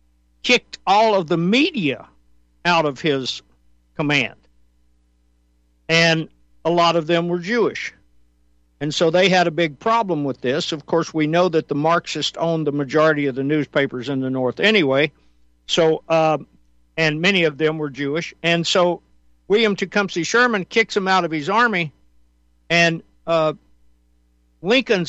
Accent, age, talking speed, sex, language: American, 60-79, 155 wpm, male, English